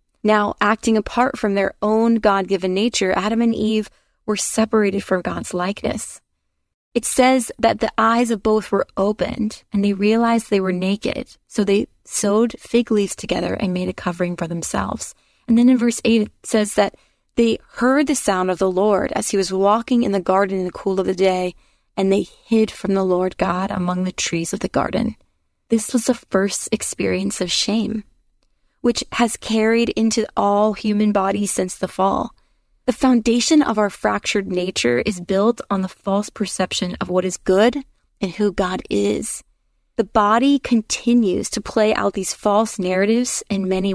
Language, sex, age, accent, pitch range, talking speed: English, female, 30-49, American, 190-230 Hz, 180 wpm